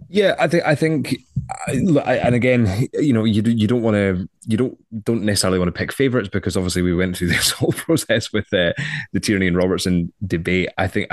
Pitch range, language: 90-105 Hz, English